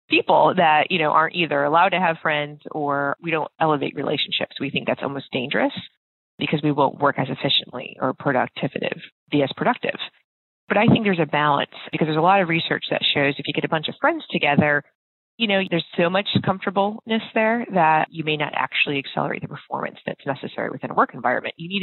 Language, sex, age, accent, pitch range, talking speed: English, female, 30-49, American, 150-195 Hz, 205 wpm